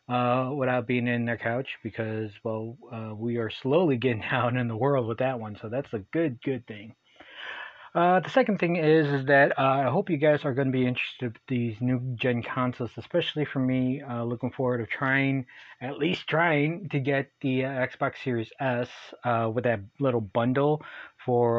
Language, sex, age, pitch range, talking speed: English, male, 20-39, 120-140 Hz, 200 wpm